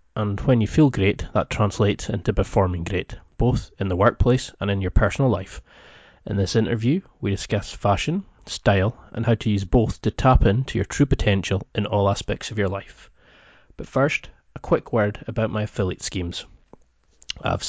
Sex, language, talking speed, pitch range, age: male, English, 180 wpm, 100-120 Hz, 20-39